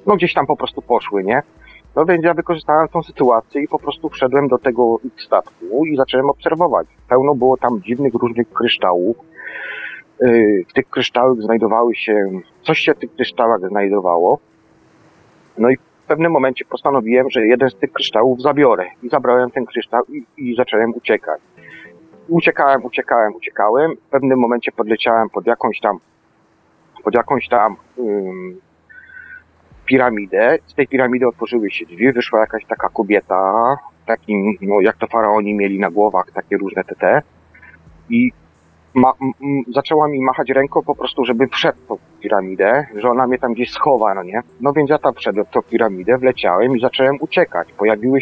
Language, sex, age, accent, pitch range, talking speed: Polish, male, 40-59, native, 110-140 Hz, 165 wpm